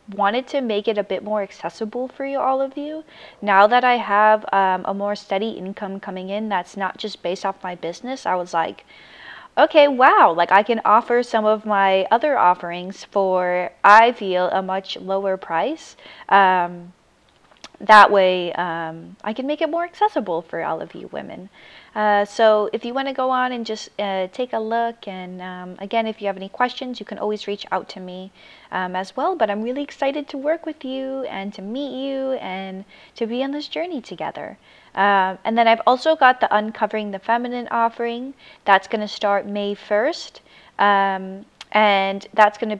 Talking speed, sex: 190 wpm, female